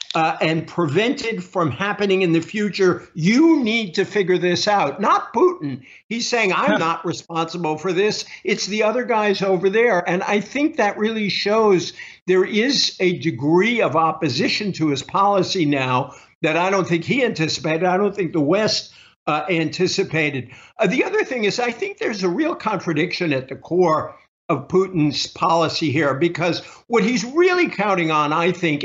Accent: American